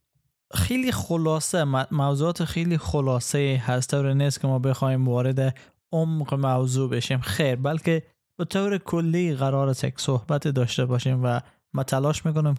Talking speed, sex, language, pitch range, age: 135 wpm, male, Persian, 135-160 Hz, 20-39